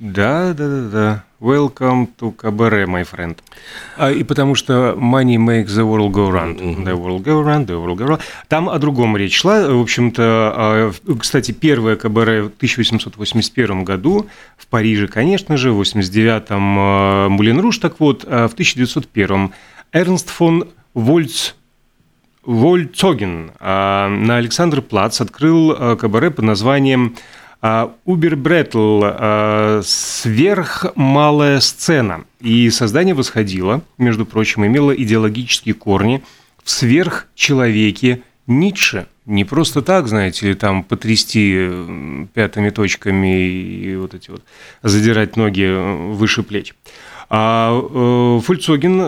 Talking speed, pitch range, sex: 115 wpm, 105-140 Hz, male